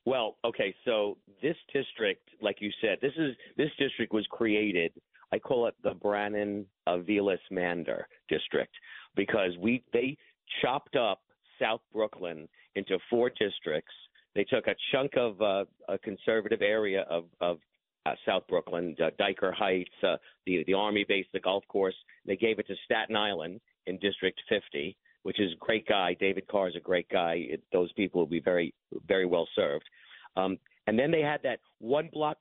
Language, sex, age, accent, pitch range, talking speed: English, male, 50-69, American, 100-125 Hz, 165 wpm